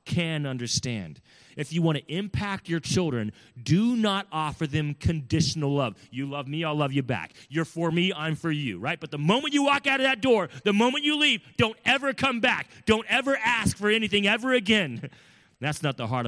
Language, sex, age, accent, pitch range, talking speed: English, male, 30-49, American, 125-195 Hz, 210 wpm